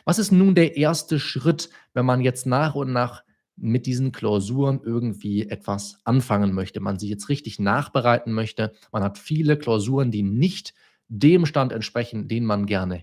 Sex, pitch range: male, 110-155 Hz